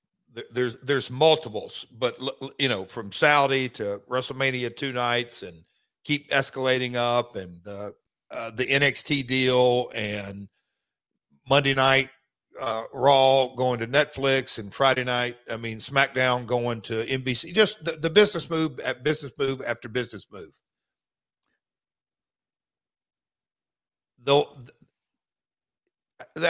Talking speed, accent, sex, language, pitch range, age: 115 wpm, American, male, English, 120-145 Hz, 50-69